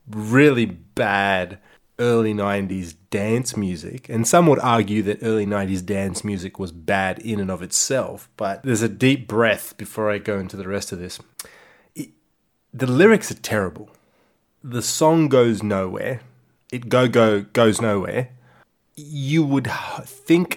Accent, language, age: Australian, English, 20-39